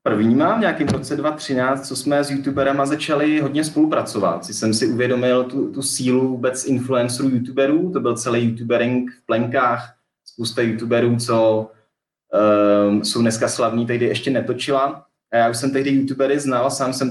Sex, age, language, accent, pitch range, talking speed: male, 20-39, Czech, native, 110-130 Hz, 165 wpm